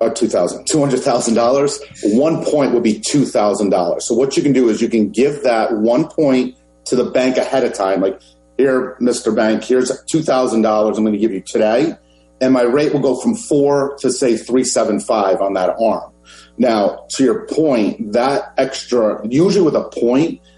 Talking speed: 170 wpm